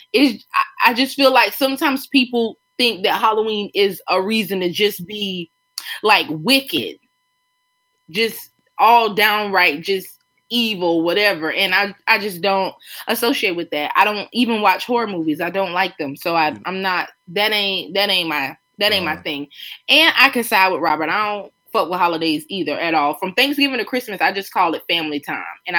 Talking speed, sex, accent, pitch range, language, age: 185 wpm, female, American, 175-245 Hz, English, 20-39